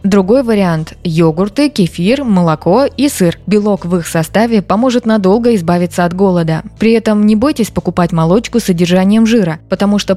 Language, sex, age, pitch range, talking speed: Russian, female, 20-39, 170-210 Hz, 160 wpm